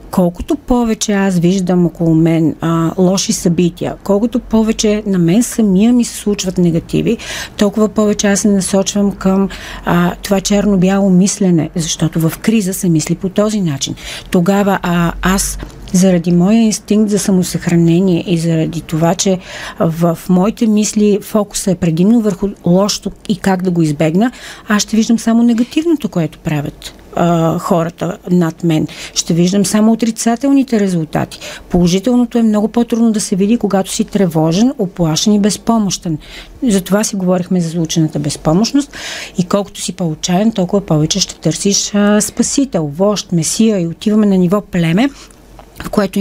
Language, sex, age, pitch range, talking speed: Bulgarian, female, 40-59, 170-215 Hz, 145 wpm